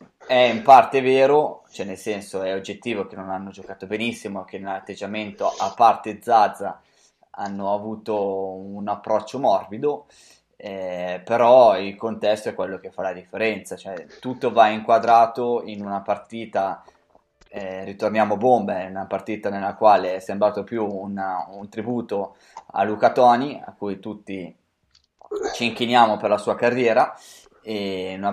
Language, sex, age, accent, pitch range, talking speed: Italian, male, 20-39, native, 95-115 Hz, 145 wpm